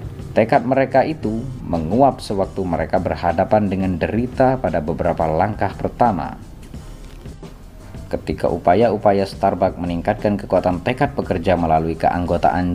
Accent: native